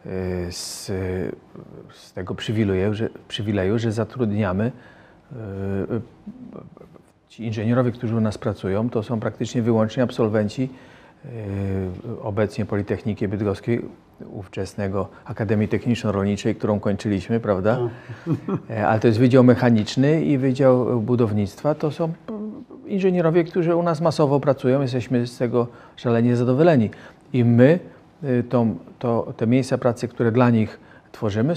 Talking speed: 115 wpm